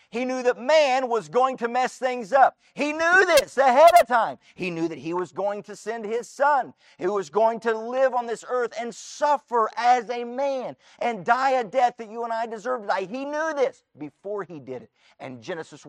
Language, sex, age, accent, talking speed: English, male, 40-59, American, 225 wpm